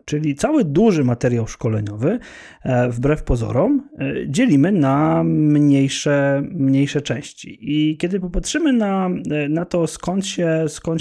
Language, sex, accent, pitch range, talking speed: Polish, male, native, 135-165 Hz, 115 wpm